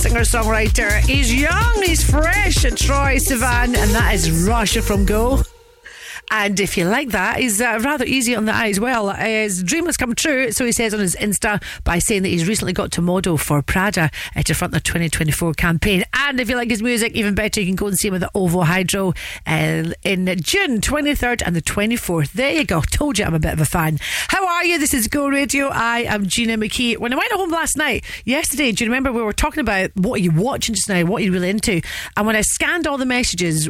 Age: 40-59